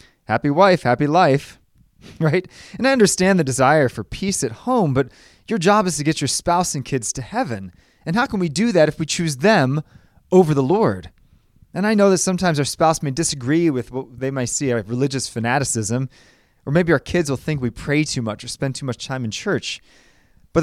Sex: male